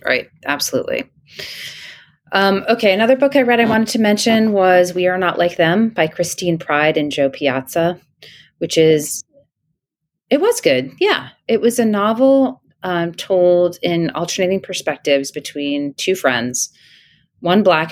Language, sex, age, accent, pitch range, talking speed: English, female, 30-49, American, 145-185 Hz, 145 wpm